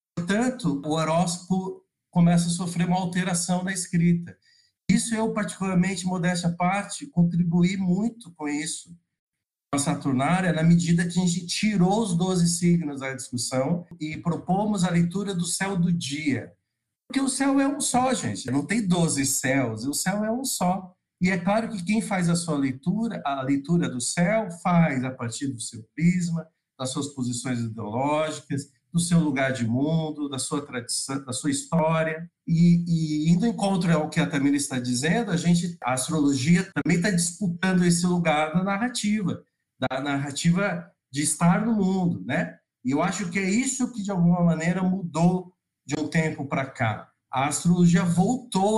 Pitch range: 145-185 Hz